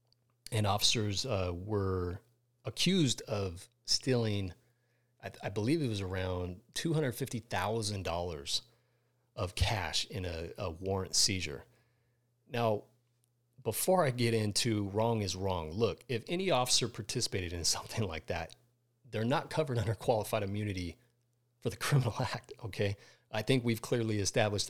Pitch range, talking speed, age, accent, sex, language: 105-125 Hz, 135 wpm, 30-49, American, male, English